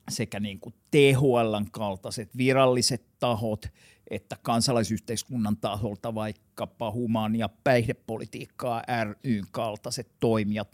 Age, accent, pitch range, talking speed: 50-69, native, 105-135 Hz, 90 wpm